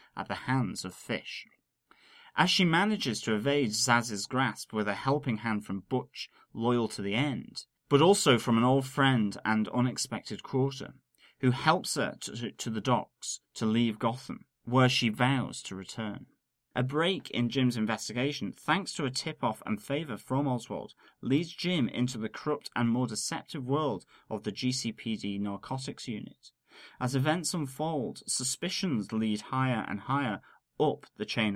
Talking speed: 160 wpm